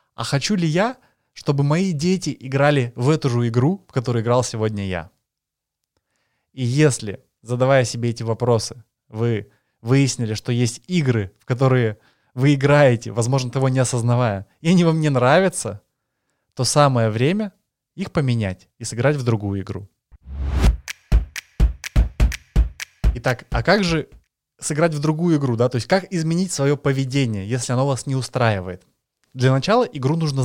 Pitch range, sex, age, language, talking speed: 115-150 Hz, male, 20-39, Russian, 145 wpm